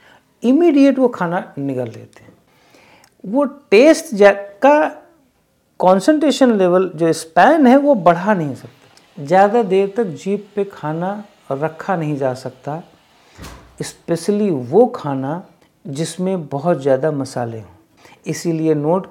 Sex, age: male, 50-69